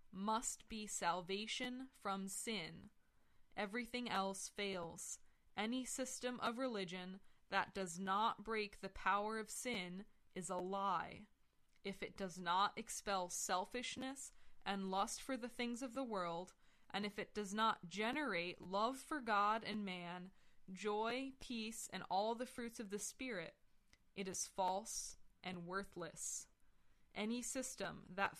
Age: 20-39